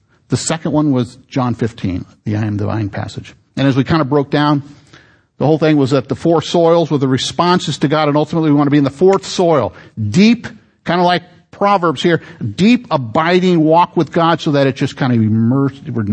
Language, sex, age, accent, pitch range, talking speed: English, male, 50-69, American, 110-140 Hz, 220 wpm